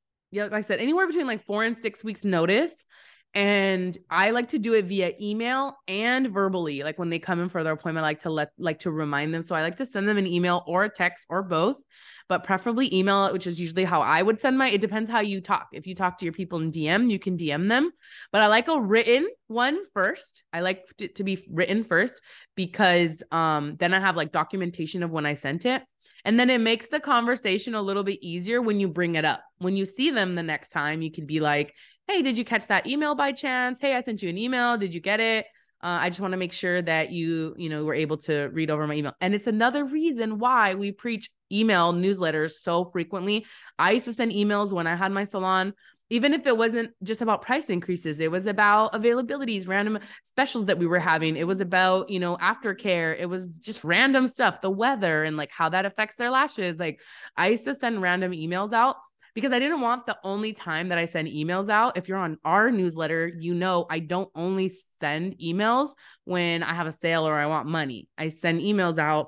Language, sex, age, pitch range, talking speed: English, female, 20-39, 170-225 Hz, 235 wpm